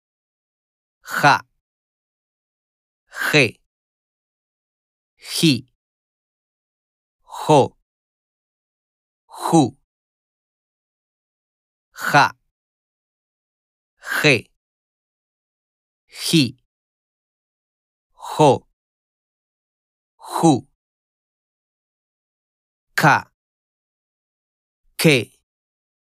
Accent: American